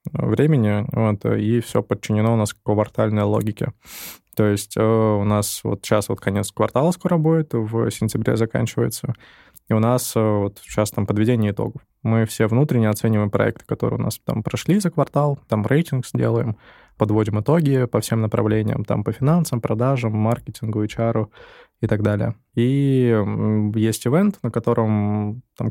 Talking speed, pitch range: 155 wpm, 110-125 Hz